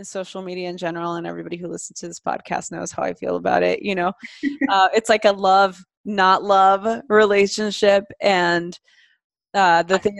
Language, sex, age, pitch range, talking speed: English, female, 20-39, 180-205 Hz, 180 wpm